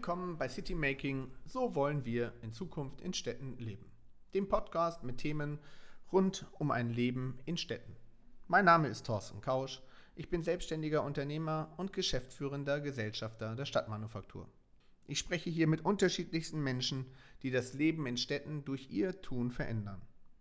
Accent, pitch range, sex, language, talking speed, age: German, 125-160 Hz, male, German, 145 wpm, 40-59